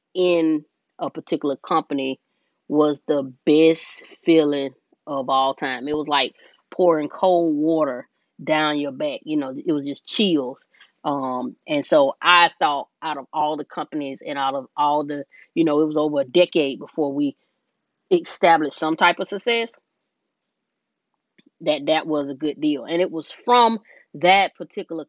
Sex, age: female, 20-39